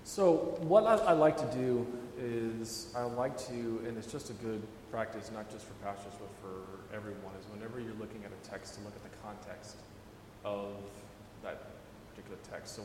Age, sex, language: 30-49, male, English